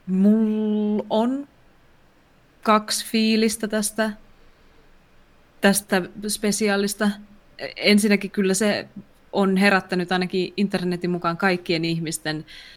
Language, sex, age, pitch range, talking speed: Finnish, female, 20-39, 165-195 Hz, 80 wpm